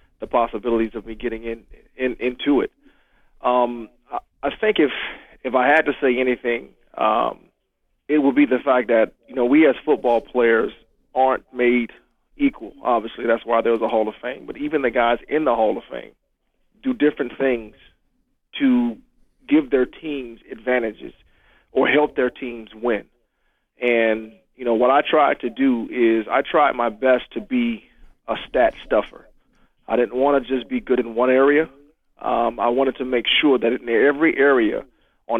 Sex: male